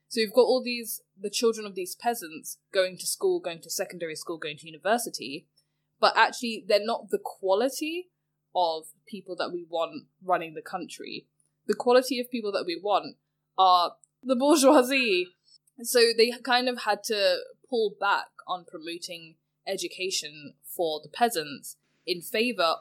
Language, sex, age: English, female, 10-29